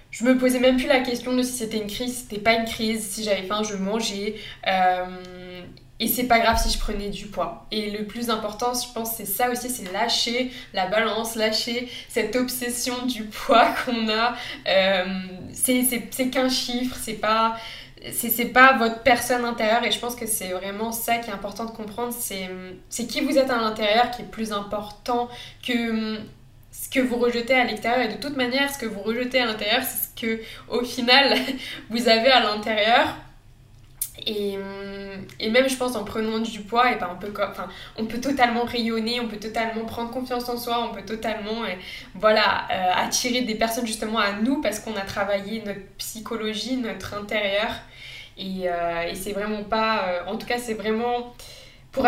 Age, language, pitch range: 20-39, French, 205-245 Hz